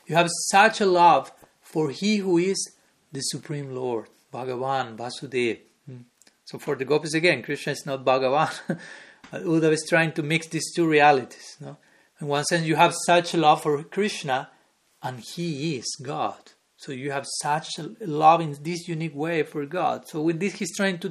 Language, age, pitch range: English, 40-59, 140-170 Hz